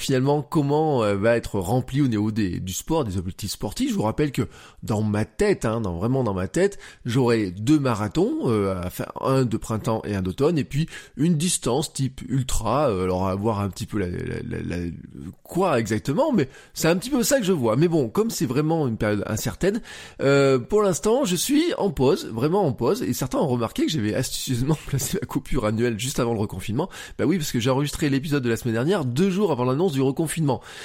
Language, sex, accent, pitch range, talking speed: French, male, French, 105-160 Hz, 225 wpm